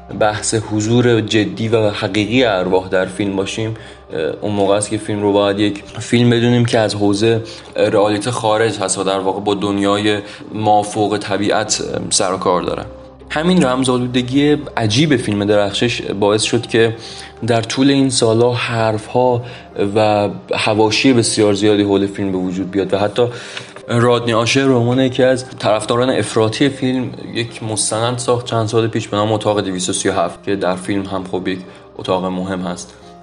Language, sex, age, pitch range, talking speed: Persian, male, 30-49, 105-120 Hz, 150 wpm